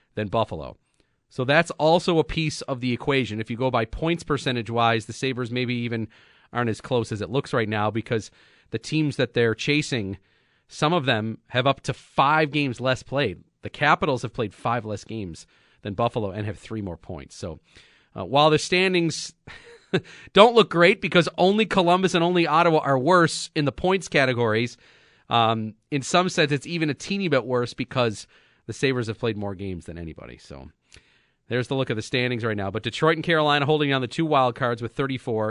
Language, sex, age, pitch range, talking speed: English, male, 40-59, 110-145 Hz, 200 wpm